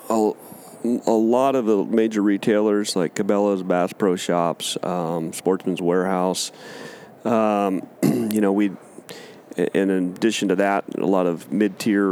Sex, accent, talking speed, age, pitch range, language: male, American, 130 wpm, 40-59, 85-105 Hz, English